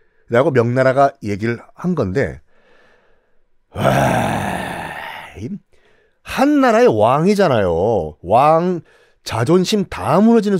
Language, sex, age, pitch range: Korean, male, 40-59, 130-200 Hz